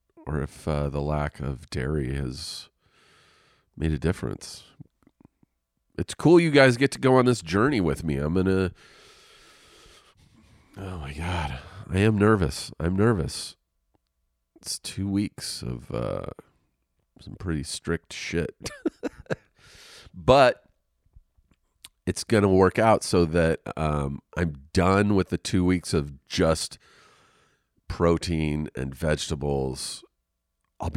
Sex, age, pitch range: male, 40-59, 70-95 Hz